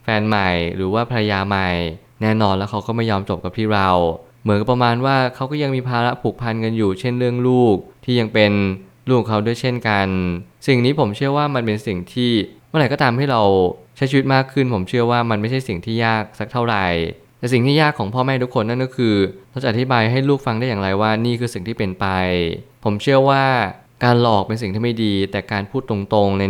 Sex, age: male, 20-39